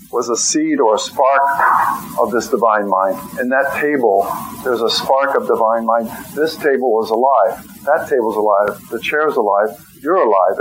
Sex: male